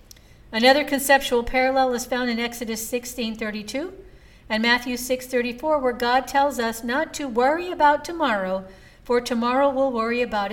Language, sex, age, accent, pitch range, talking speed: English, female, 60-79, American, 195-250 Hz, 140 wpm